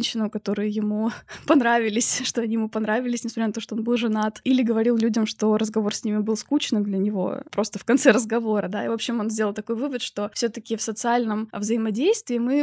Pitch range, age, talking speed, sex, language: 220-260 Hz, 20-39, 210 wpm, female, Russian